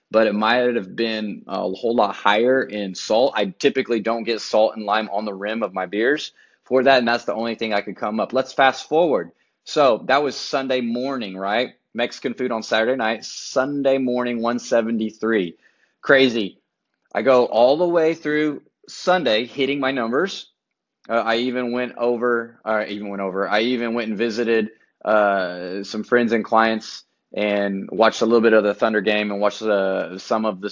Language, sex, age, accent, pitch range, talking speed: English, male, 20-39, American, 105-125 Hz, 185 wpm